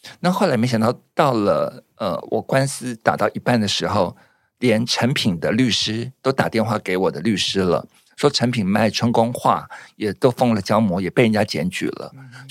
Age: 50-69